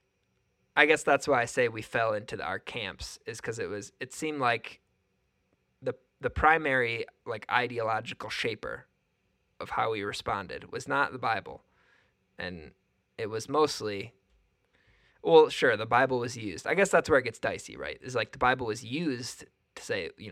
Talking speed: 175 wpm